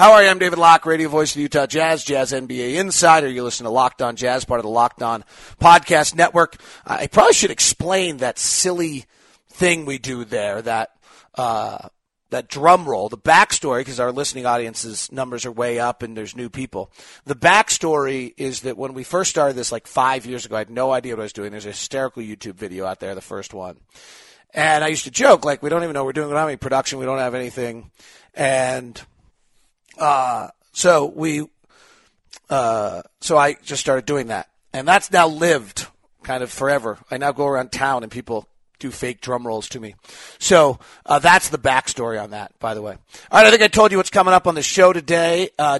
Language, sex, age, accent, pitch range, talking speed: English, male, 40-59, American, 125-155 Hz, 215 wpm